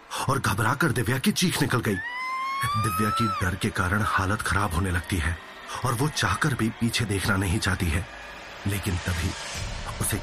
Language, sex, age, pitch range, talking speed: Hindi, male, 40-59, 95-120 Hz, 170 wpm